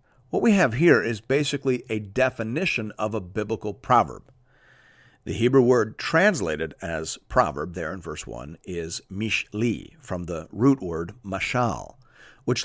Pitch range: 105-145 Hz